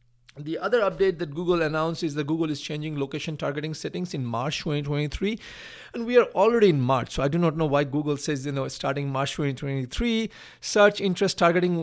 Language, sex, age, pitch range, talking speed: English, male, 50-69, 145-185 Hz, 200 wpm